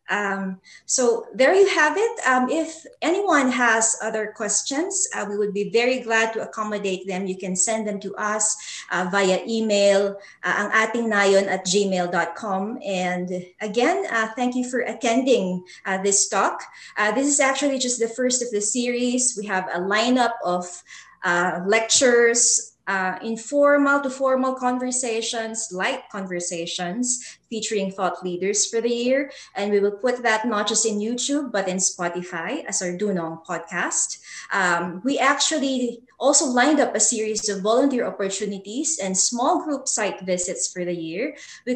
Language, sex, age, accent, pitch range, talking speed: Filipino, female, 20-39, native, 195-255 Hz, 160 wpm